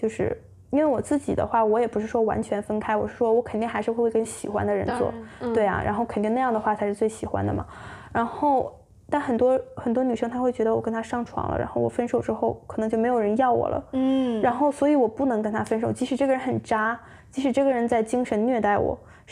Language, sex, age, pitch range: Chinese, female, 10-29, 220-265 Hz